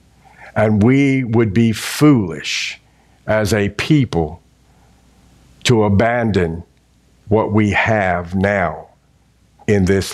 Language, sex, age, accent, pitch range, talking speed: English, male, 50-69, American, 95-125 Hz, 95 wpm